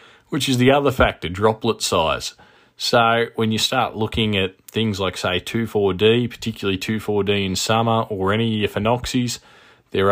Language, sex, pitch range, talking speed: English, male, 90-110 Hz, 160 wpm